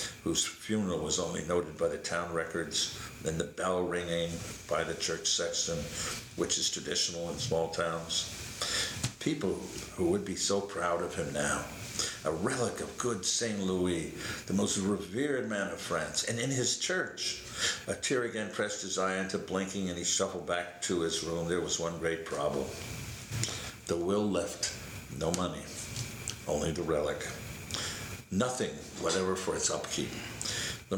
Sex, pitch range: male, 85-110 Hz